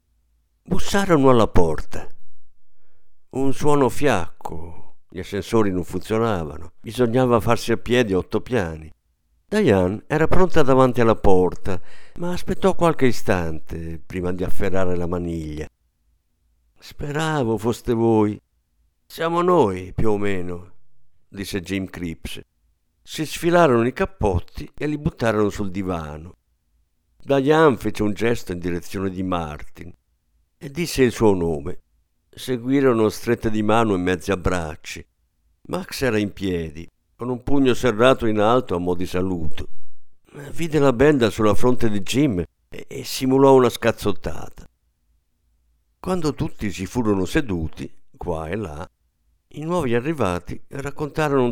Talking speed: 130 wpm